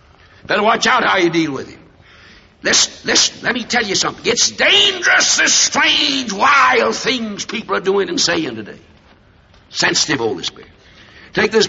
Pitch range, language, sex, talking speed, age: 200-280 Hz, English, male, 165 wpm, 60-79